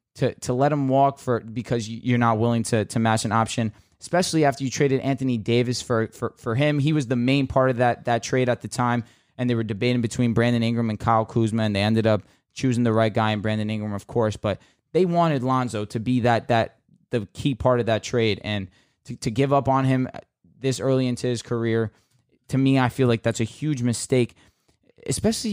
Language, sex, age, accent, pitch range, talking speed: English, male, 20-39, American, 115-140 Hz, 225 wpm